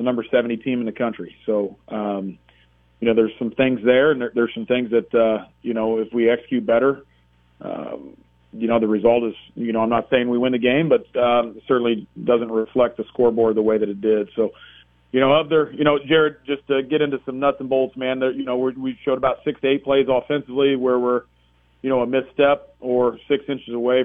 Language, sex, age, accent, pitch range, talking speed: English, male, 40-59, American, 115-130 Hz, 230 wpm